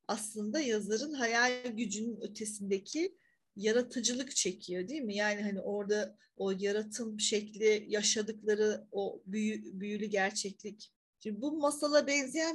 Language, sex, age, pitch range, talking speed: Turkish, female, 40-59, 210-255 Hz, 115 wpm